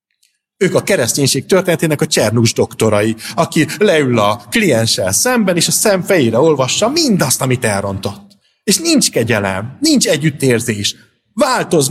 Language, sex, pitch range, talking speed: Hungarian, male, 115-190 Hz, 130 wpm